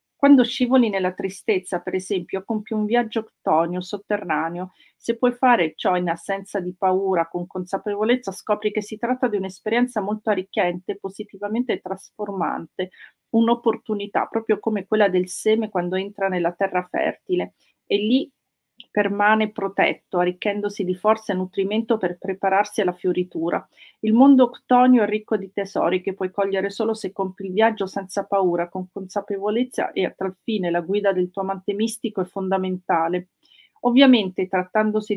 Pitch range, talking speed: 190-220 Hz, 150 wpm